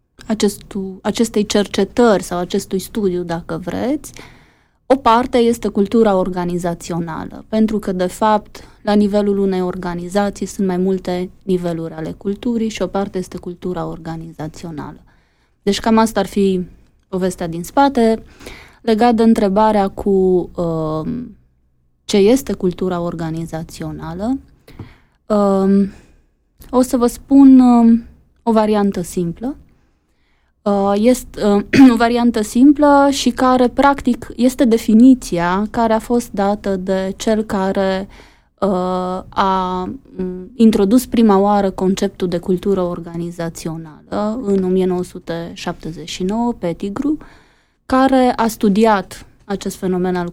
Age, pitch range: 20-39, 180-230 Hz